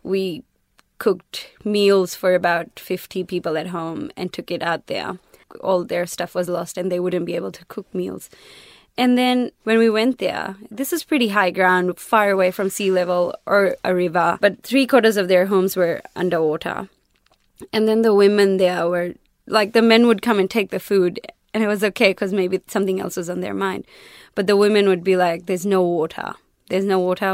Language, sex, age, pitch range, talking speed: English, female, 20-39, 175-200 Hz, 205 wpm